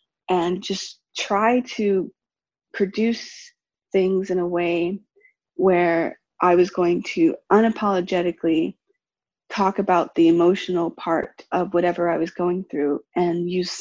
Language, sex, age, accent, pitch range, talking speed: English, female, 20-39, American, 175-220 Hz, 120 wpm